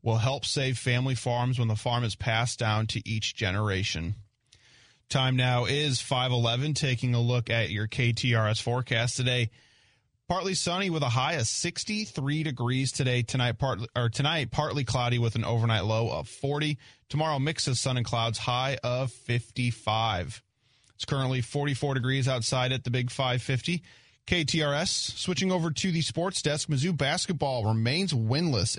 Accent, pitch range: American, 115-140 Hz